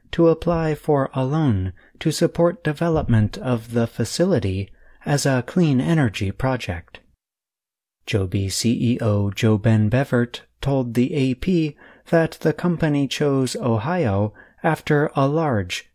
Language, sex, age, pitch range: Chinese, male, 30-49, 110-150 Hz